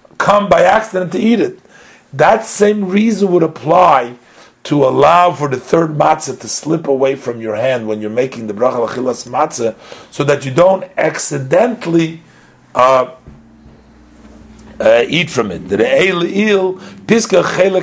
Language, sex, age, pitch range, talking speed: English, male, 50-69, 130-170 Hz, 150 wpm